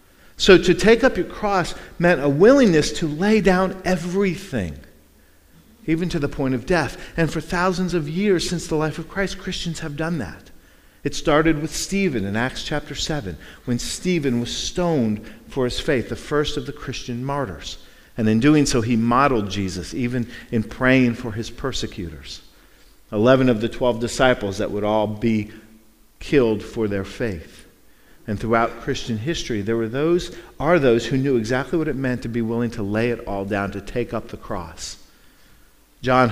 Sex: male